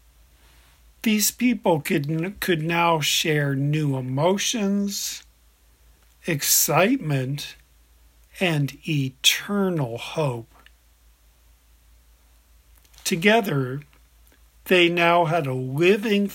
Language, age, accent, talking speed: English, 50-69, American, 65 wpm